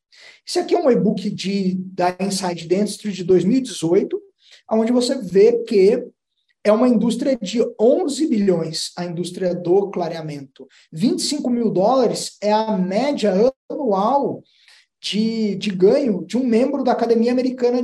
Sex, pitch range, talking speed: male, 195-250 Hz, 135 wpm